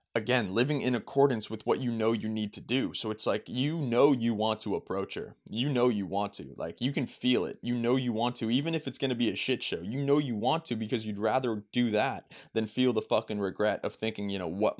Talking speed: 270 wpm